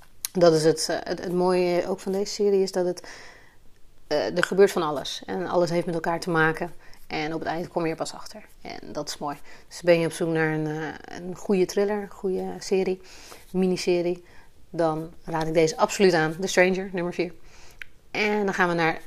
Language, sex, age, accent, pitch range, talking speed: Dutch, female, 30-49, Dutch, 165-190 Hz, 205 wpm